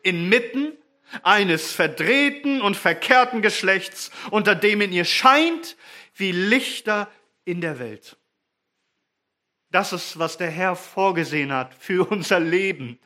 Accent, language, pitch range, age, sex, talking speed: German, German, 180-245 Hz, 40-59, male, 120 wpm